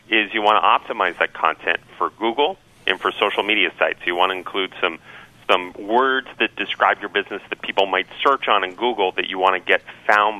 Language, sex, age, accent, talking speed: English, male, 40-59, American, 220 wpm